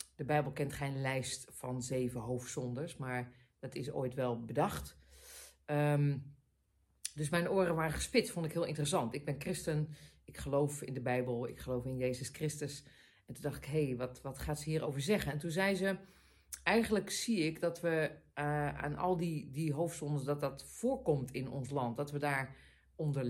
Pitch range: 130-170 Hz